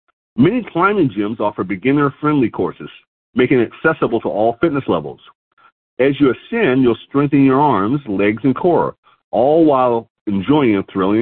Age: 40-59